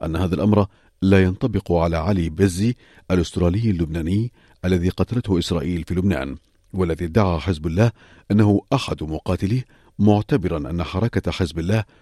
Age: 40-59